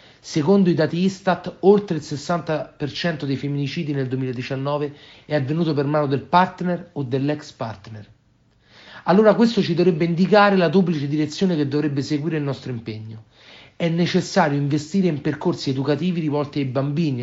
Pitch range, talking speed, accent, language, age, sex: 130-170 Hz, 150 wpm, native, Italian, 40-59, male